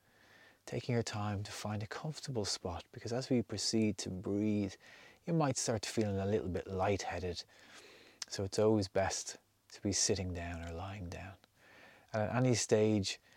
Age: 30-49